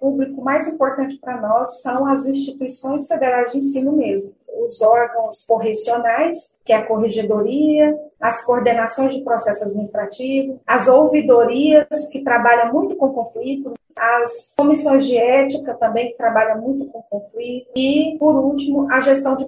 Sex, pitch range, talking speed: female, 235-290 Hz, 145 wpm